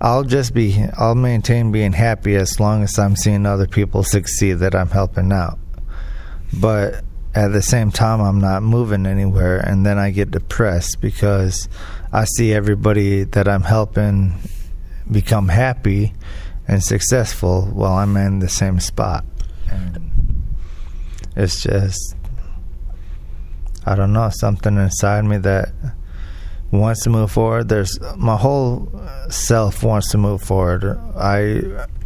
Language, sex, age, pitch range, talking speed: English, male, 20-39, 90-110 Hz, 135 wpm